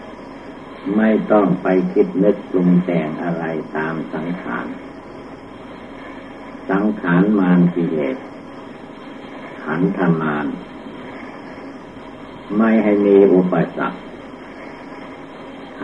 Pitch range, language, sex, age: 85-100 Hz, Thai, male, 60-79